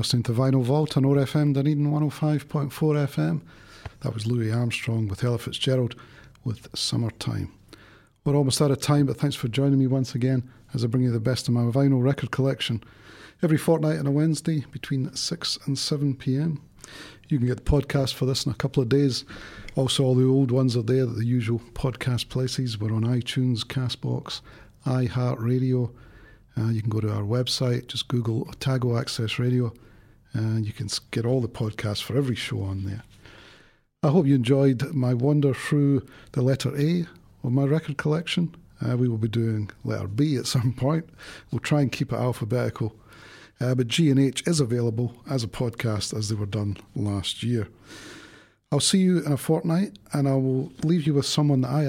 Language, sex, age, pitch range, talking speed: English, male, 40-59, 115-140 Hz, 195 wpm